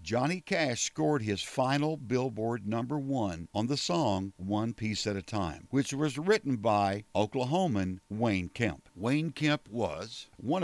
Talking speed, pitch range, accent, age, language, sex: 150 wpm, 105-150 Hz, American, 60-79, English, male